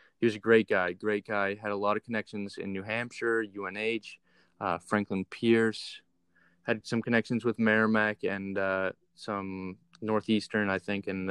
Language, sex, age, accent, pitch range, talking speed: English, male, 20-39, American, 100-115 Hz, 165 wpm